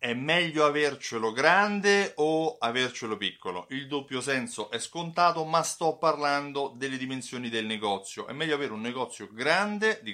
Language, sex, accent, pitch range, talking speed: Italian, male, native, 120-170 Hz, 155 wpm